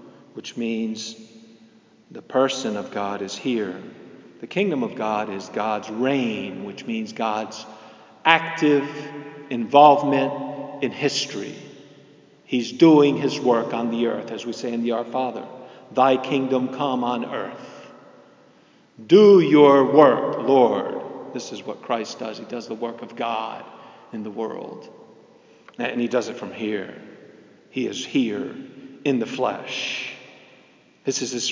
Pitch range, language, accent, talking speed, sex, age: 120-165 Hz, English, American, 140 wpm, male, 50-69